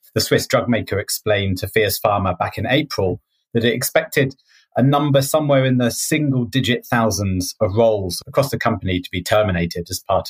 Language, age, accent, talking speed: English, 30-49, British, 185 wpm